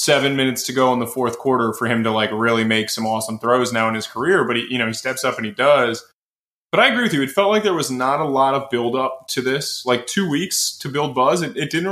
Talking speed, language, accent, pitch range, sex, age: 290 wpm, English, American, 120-145 Hz, male, 20-39